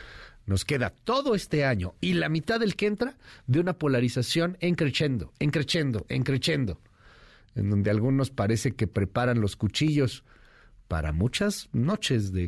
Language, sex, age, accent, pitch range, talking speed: Spanish, male, 50-69, Mexican, 105-135 Hz, 145 wpm